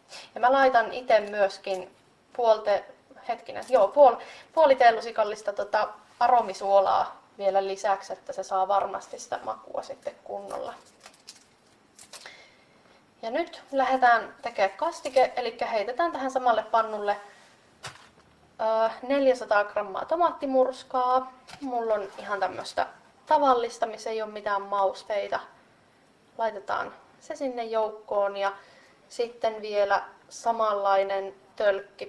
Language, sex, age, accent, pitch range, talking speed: Finnish, female, 20-39, native, 200-255 Hz, 100 wpm